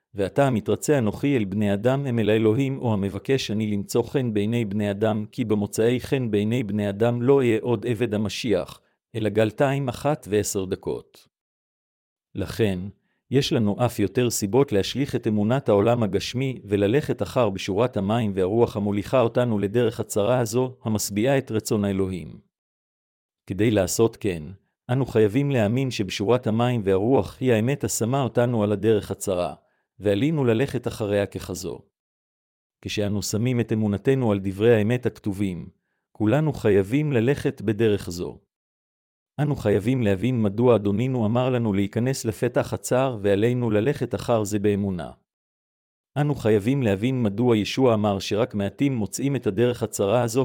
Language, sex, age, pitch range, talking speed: Hebrew, male, 50-69, 105-125 Hz, 140 wpm